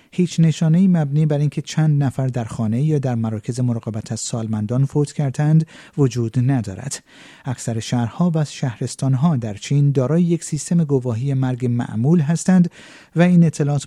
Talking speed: 160 wpm